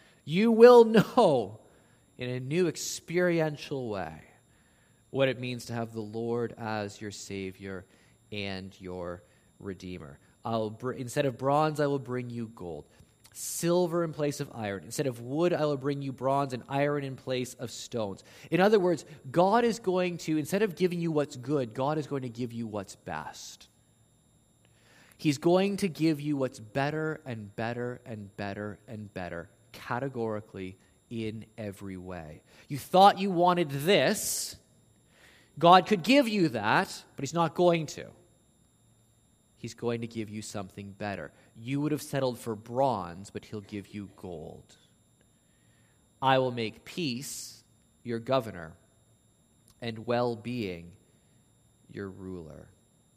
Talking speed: 150 wpm